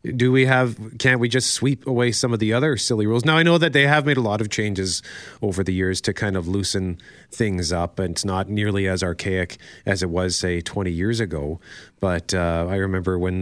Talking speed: 235 wpm